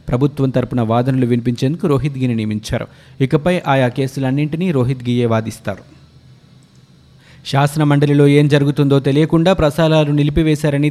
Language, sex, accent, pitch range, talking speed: Telugu, male, native, 125-150 Hz, 105 wpm